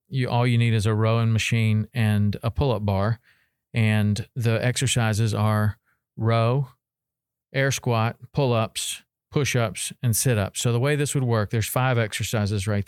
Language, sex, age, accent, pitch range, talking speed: English, male, 40-59, American, 105-125 Hz, 155 wpm